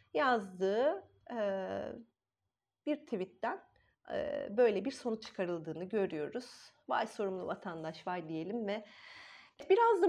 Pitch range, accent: 210-305 Hz, native